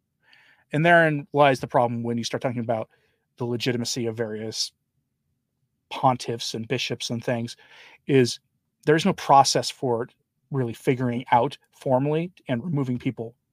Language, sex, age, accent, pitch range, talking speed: English, male, 40-59, American, 125-160 Hz, 140 wpm